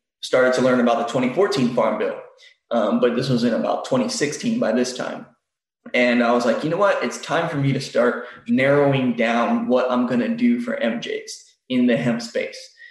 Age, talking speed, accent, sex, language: 20-39, 205 wpm, American, male, English